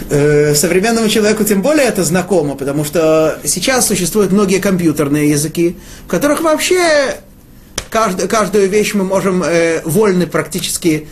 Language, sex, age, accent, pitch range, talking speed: Russian, male, 30-49, native, 155-225 Hz, 125 wpm